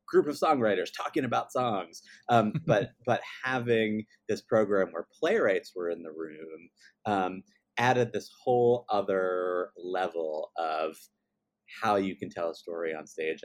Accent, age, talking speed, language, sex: American, 30-49, 145 wpm, English, male